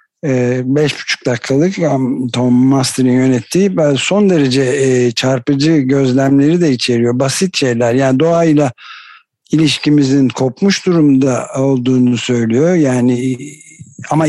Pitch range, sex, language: 130-160 Hz, male, Turkish